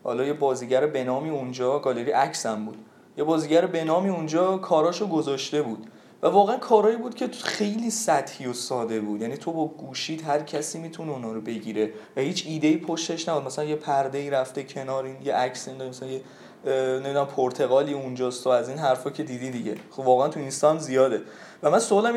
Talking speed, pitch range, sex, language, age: 190 wpm, 125-155 Hz, male, Persian, 20-39